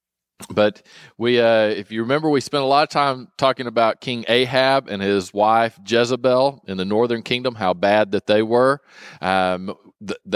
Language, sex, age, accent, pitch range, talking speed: English, male, 40-59, American, 100-120 Hz, 180 wpm